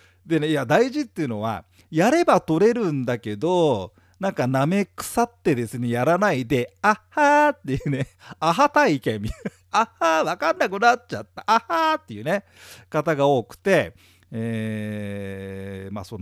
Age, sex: 40-59, male